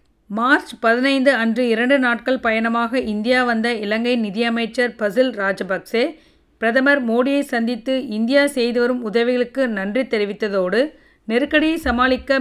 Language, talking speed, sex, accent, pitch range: Tamil, 110 wpm, female, native, 225-265 Hz